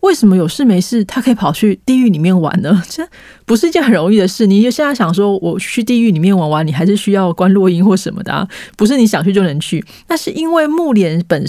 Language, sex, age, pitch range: Chinese, female, 20-39, 170-225 Hz